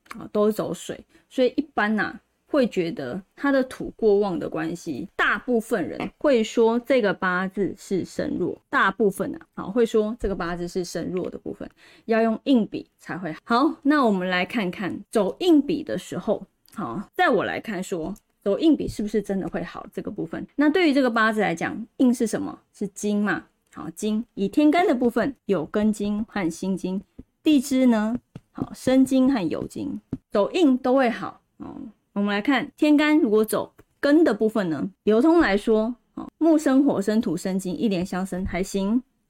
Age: 20-39